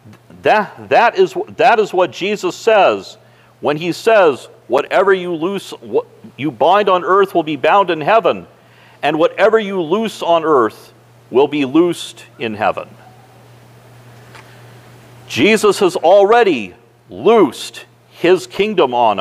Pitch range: 180-235 Hz